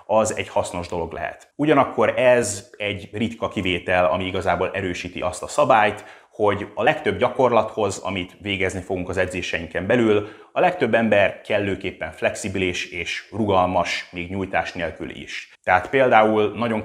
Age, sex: 30-49, male